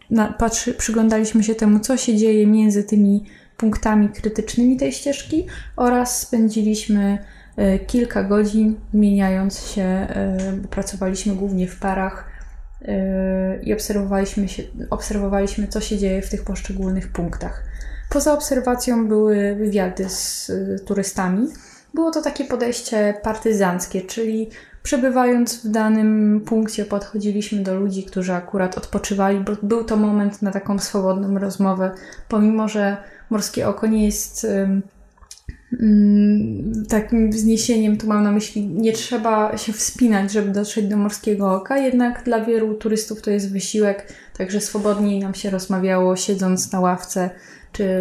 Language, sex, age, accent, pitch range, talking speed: Polish, female, 20-39, native, 195-220 Hz, 135 wpm